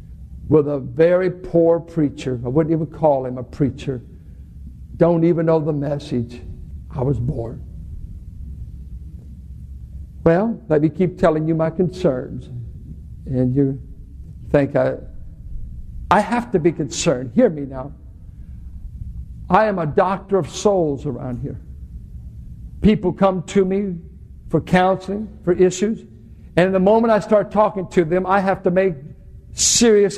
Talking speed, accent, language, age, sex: 135 wpm, American, English, 60-79, male